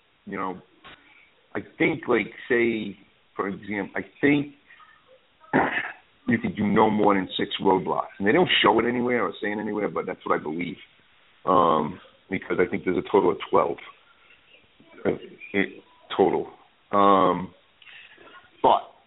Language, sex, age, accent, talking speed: English, male, 50-69, American, 140 wpm